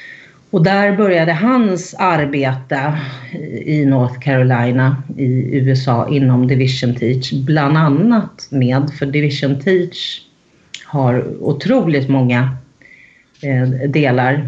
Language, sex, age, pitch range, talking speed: Swedish, female, 40-59, 130-165 Hz, 95 wpm